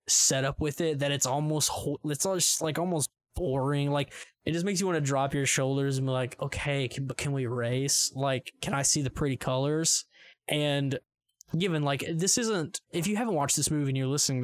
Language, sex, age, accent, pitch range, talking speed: English, male, 10-29, American, 135-160 Hz, 225 wpm